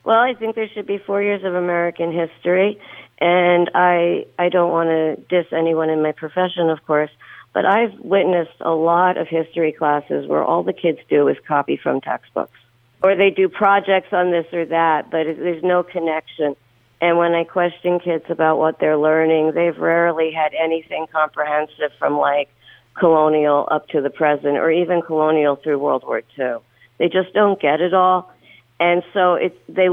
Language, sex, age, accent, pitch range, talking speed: English, female, 50-69, American, 155-195 Hz, 185 wpm